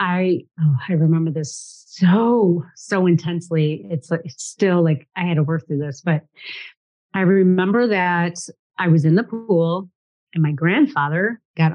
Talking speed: 165 wpm